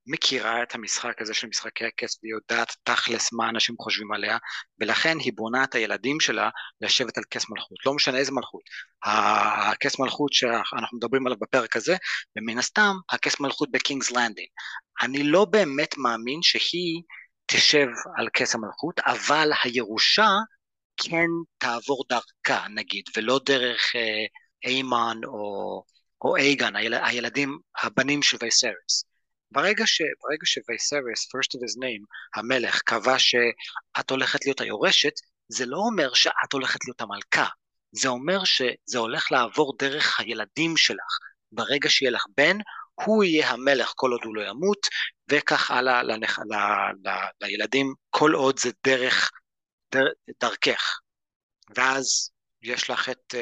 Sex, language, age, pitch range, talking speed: male, Hebrew, 30-49, 115-150 Hz, 130 wpm